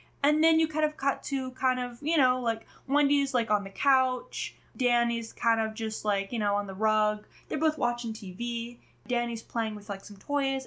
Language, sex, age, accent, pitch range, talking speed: English, female, 10-29, American, 210-300 Hz, 210 wpm